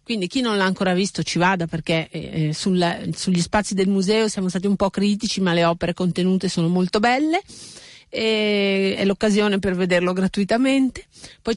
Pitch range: 180-215 Hz